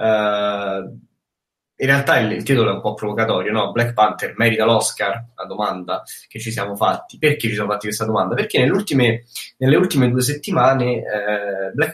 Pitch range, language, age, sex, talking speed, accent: 105-130 Hz, Italian, 20-39, male, 155 wpm, native